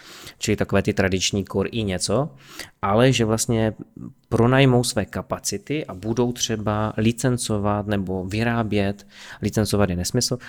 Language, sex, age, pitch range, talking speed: Czech, male, 20-39, 100-115 Hz, 125 wpm